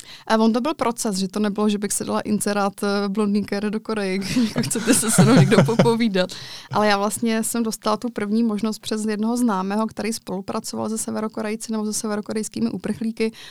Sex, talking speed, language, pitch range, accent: female, 185 wpm, Czech, 195-215 Hz, native